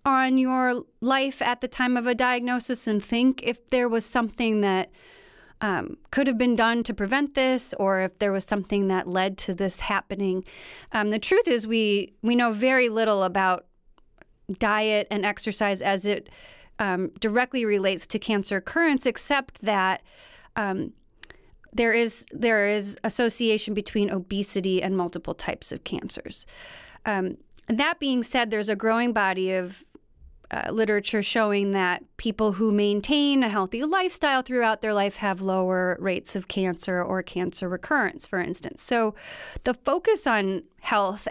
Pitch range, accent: 195-245 Hz, American